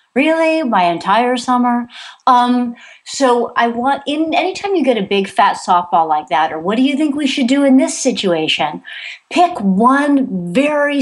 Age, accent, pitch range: 40-59, American, 195-270 Hz